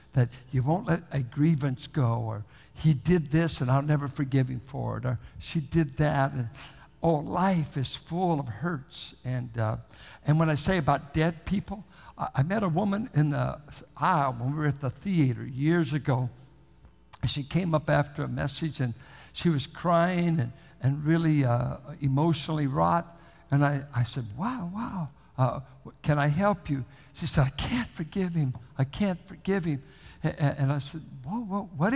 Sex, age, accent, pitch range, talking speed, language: male, 60-79, American, 130-170 Hz, 185 wpm, English